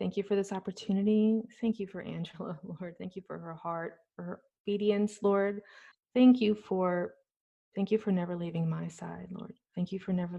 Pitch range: 180-205 Hz